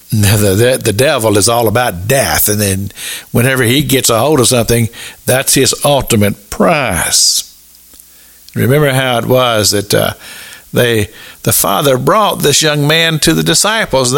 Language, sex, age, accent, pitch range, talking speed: English, male, 50-69, American, 105-175 Hz, 165 wpm